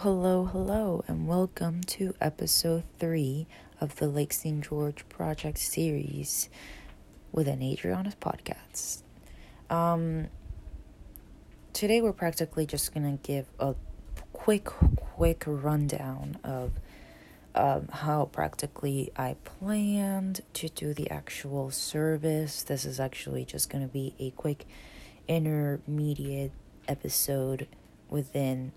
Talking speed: 110 wpm